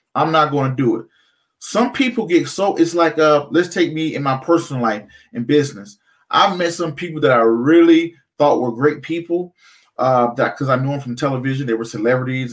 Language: English